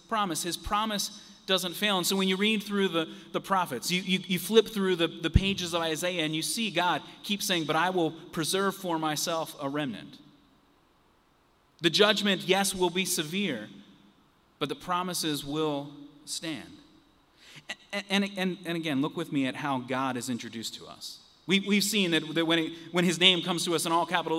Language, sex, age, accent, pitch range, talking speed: English, male, 30-49, American, 150-190 Hz, 195 wpm